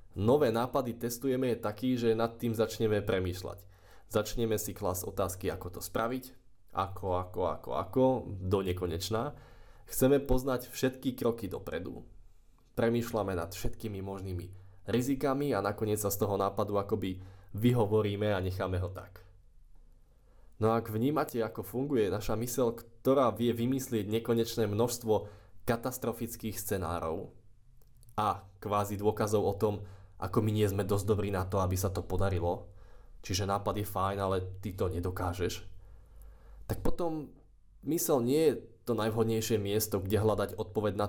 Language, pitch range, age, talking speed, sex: Slovak, 95-115 Hz, 20-39, 140 wpm, male